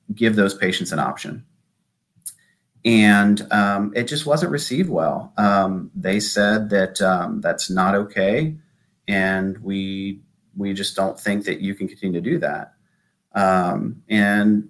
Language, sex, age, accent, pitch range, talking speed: English, male, 40-59, American, 95-110 Hz, 145 wpm